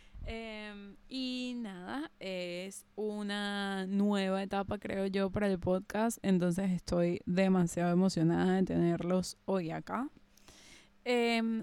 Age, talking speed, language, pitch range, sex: 20-39, 110 wpm, English, 185-235 Hz, female